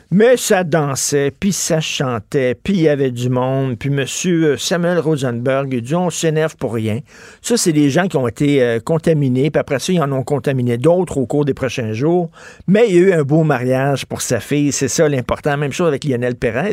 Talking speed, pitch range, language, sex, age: 220 wpm, 125-160 Hz, French, male, 50-69